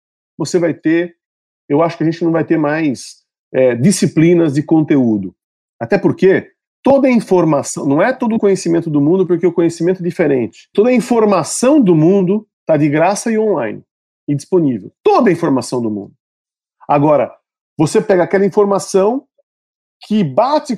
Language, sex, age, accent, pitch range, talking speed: Portuguese, male, 40-59, Brazilian, 170-240 Hz, 165 wpm